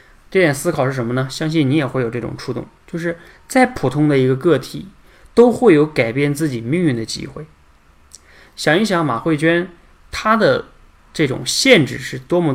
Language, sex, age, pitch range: Chinese, male, 20-39, 120-155 Hz